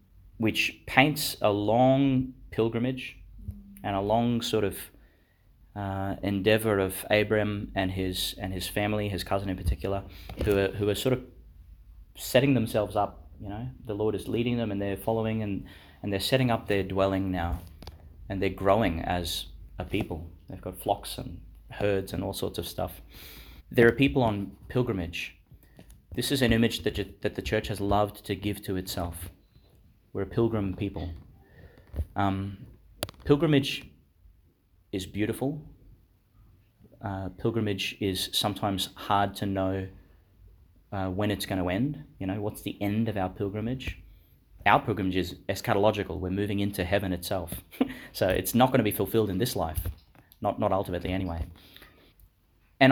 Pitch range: 90-110 Hz